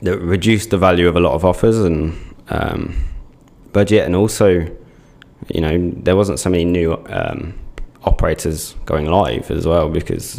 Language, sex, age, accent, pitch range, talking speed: English, male, 20-39, British, 80-95 Hz, 160 wpm